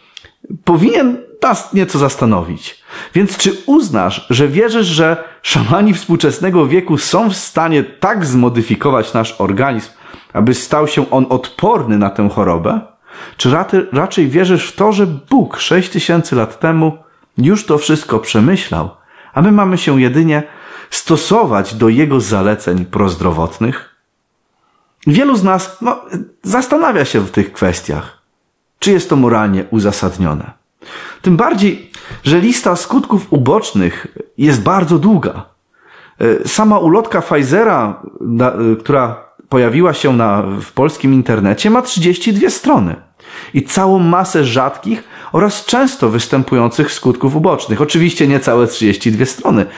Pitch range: 115-185 Hz